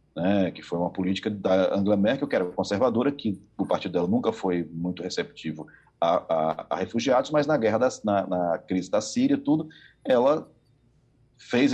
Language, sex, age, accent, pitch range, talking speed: Portuguese, male, 40-59, Brazilian, 90-125 Hz, 180 wpm